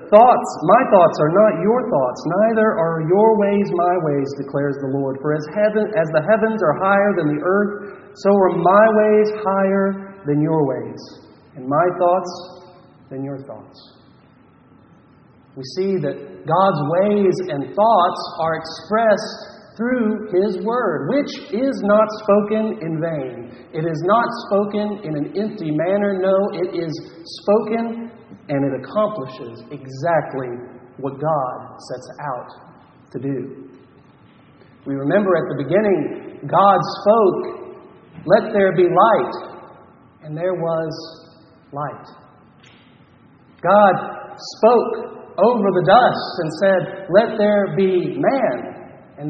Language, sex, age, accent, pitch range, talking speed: English, male, 40-59, American, 160-210 Hz, 135 wpm